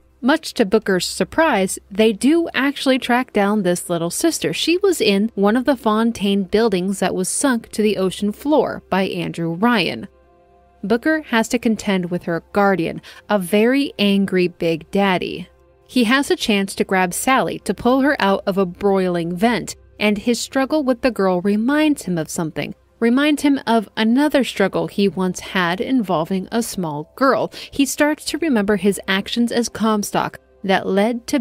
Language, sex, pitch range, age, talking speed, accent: English, female, 185-245 Hz, 30-49, 170 wpm, American